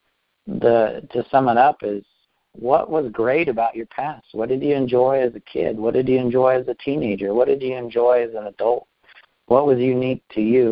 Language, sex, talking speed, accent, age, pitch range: English, male, 215 wpm, American, 50-69, 110-145 Hz